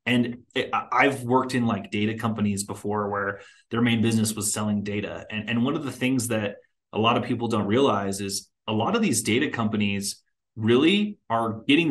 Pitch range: 105-125 Hz